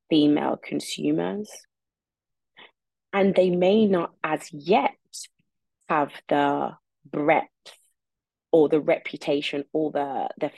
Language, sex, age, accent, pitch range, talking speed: English, female, 20-39, British, 145-180 Hz, 95 wpm